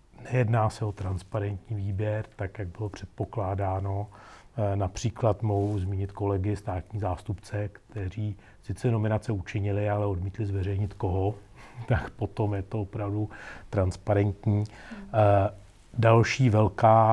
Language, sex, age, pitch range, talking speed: Czech, male, 40-59, 100-110 Hz, 110 wpm